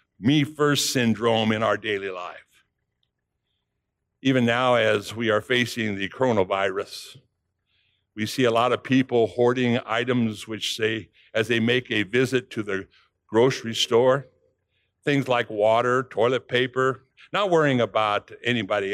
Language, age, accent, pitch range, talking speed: English, 60-79, American, 120-165 Hz, 135 wpm